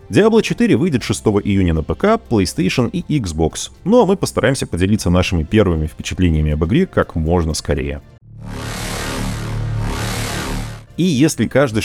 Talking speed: 130 wpm